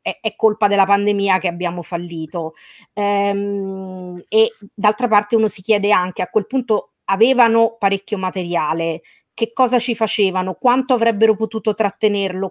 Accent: native